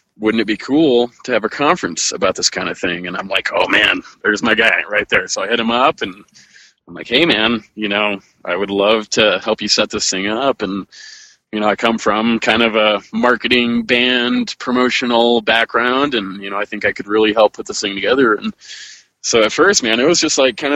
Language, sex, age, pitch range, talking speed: English, male, 20-39, 105-120 Hz, 235 wpm